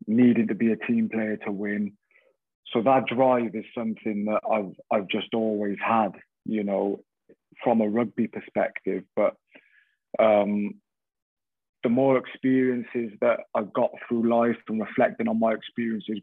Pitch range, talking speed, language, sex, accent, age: 105-115 Hz, 150 wpm, English, male, British, 20-39